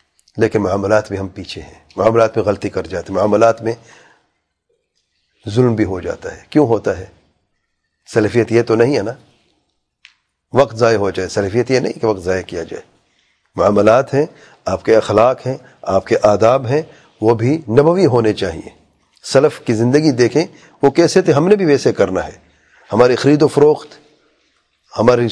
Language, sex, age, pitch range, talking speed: English, male, 40-59, 110-145 Hz, 175 wpm